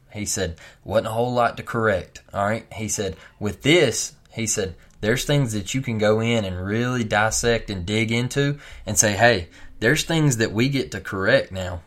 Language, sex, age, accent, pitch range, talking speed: English, male, 20-39, American, 95-115 Hz, 200 wpm